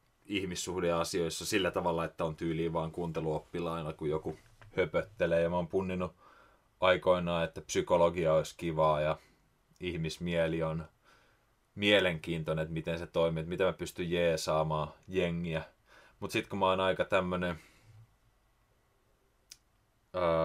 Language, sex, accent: Finnish, male, native